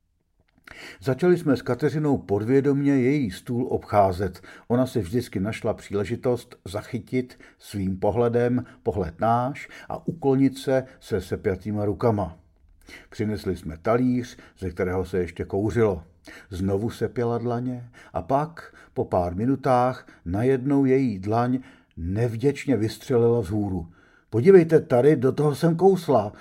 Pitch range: 95-130 Hz